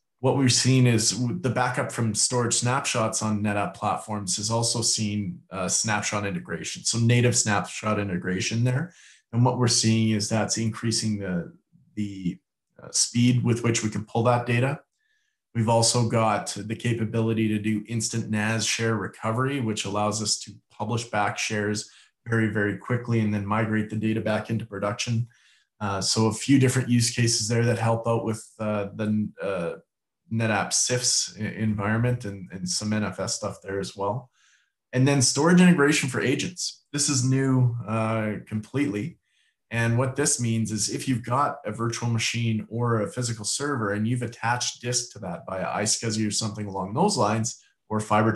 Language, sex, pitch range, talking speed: English, male, 105-120 Hz, 170 wpm